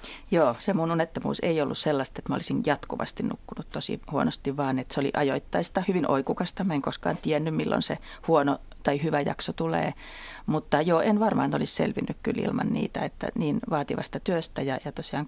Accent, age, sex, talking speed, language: native, 30-49, female, 190 wpm, Finnish